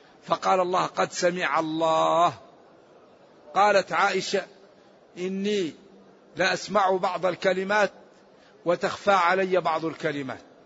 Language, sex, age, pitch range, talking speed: Arabic, male, 50-69, 170-205 Hz, 90 wpm